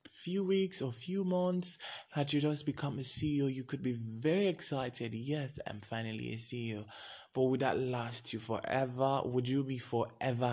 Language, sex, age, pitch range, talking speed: English, male, 20-39, 110-140 Hz, 175 wpm